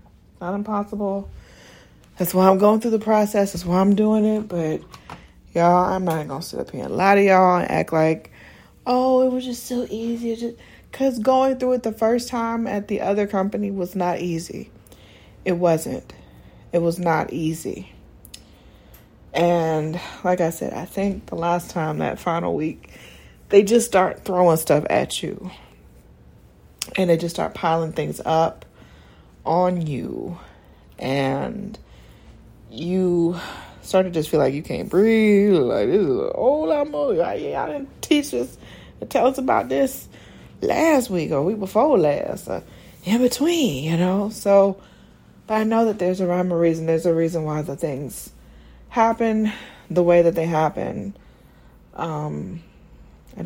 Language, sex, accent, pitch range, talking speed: English, female, American, 160-220 Hz, 160 wpm